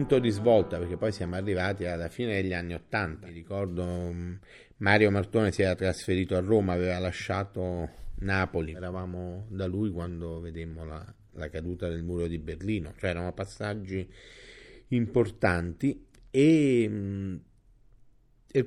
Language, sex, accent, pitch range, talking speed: Italian, male, native, 90-105 Hz, 130 wpm